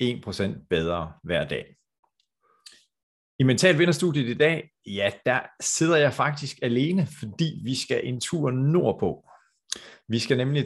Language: Danish